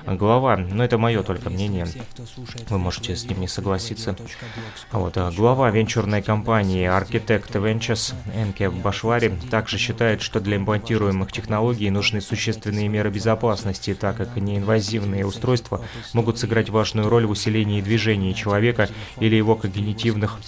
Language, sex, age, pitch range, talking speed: Russian, male, 30-49, 100-115 Hz, 135 wpm